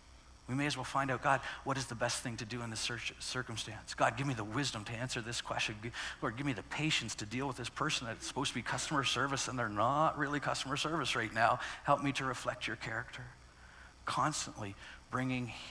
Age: 50-69